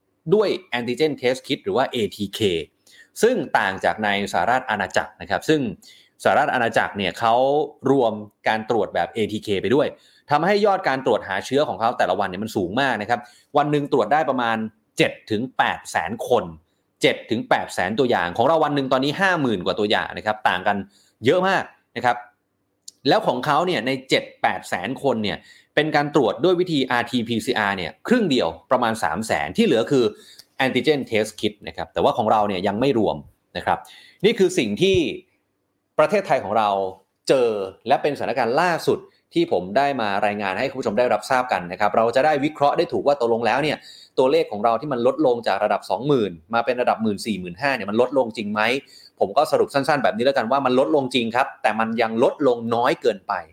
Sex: male